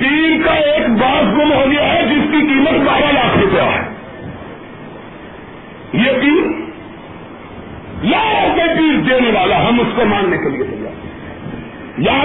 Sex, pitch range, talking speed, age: male, 255-345 Hz, 130 wpm, 50-69